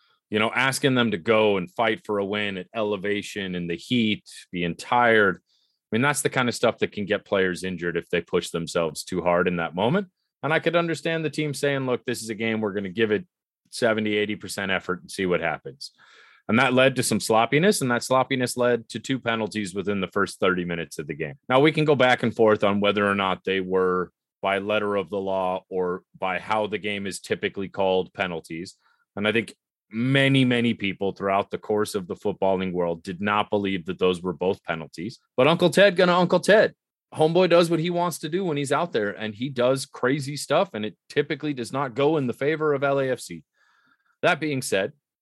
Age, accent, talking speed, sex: 30-49, American, 225 wpm, male